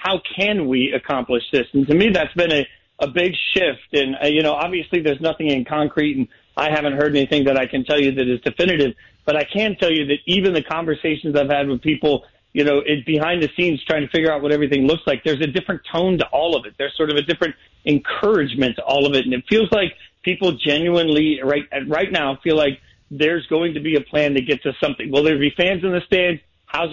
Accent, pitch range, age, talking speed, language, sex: American, 140-160 Hz, 40-59, 245 wpm, English, male